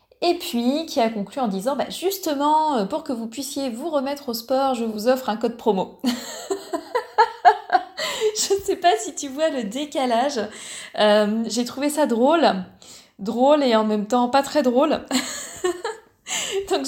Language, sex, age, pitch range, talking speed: French, female, 20-39, 195-270 Hz, 165 wpm